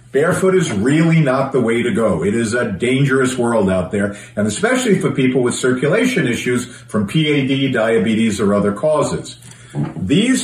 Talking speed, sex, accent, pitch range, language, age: 165 wpm, male, American, 120-180 Hz, English, 50-69